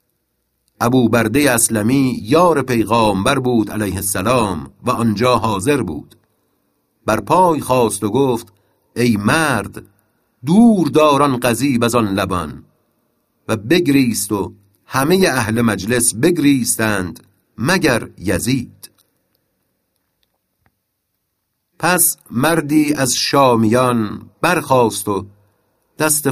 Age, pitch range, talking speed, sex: 50-69, 105-140 Hz, 90 wpm, male